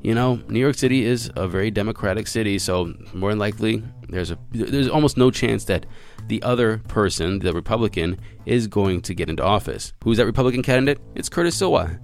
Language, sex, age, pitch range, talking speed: English, male, 20-39, 105-130 Hz, 195 wpm